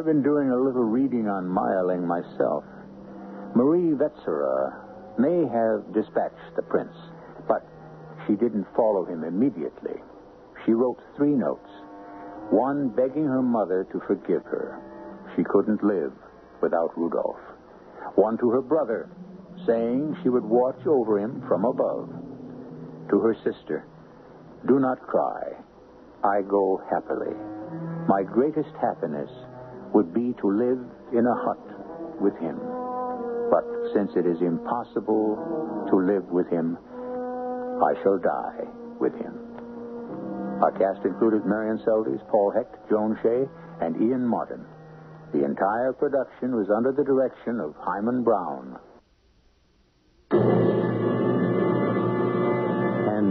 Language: English